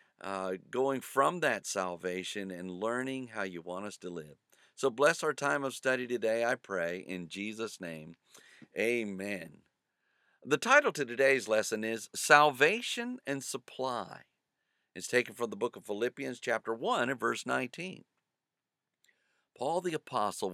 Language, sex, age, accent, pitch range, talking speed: English, male, 50-69, American, 95-135 Hz, 145 wpm